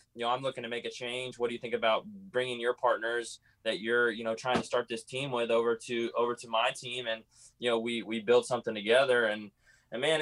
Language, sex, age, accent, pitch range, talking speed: English, male, 20-39, American, 110-125 Hz, 250 wpm